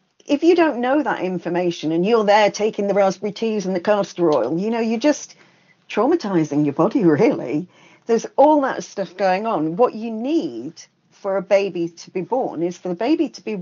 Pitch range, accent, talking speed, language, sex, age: 165-210 Hz, British, 205 wpm, English, female, 50-69